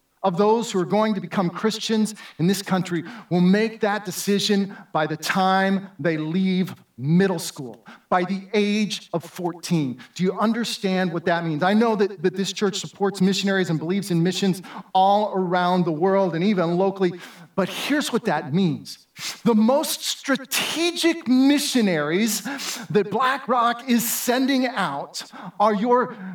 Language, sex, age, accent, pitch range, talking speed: English, male, 40-59, American, 190-240 Hz, 155 wpm